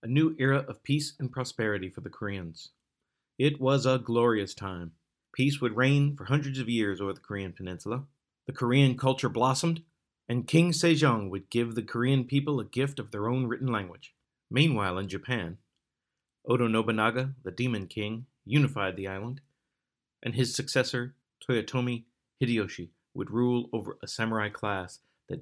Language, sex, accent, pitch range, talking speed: English, male, American, 100-130 Hz, 160 wpm